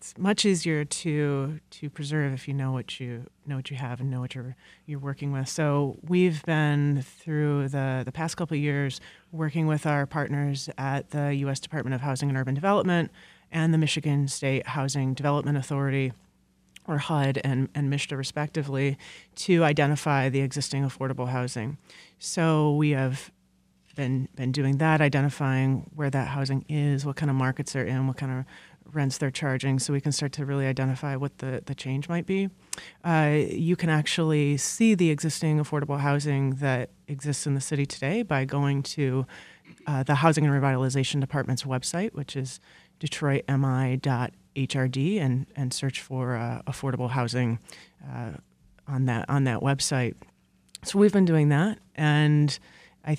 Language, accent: English, American